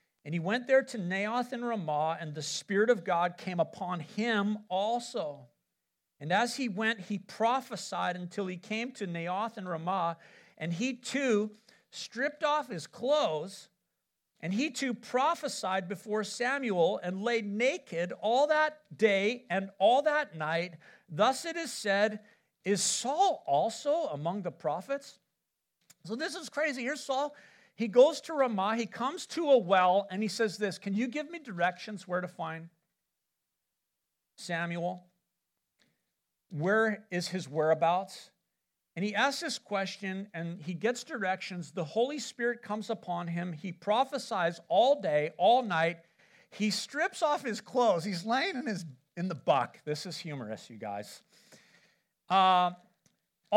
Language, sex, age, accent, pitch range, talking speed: English, male, 50-69, American, 175-250 Hz, 150 wpm